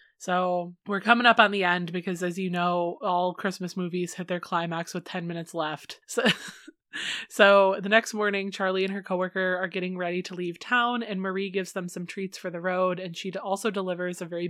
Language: English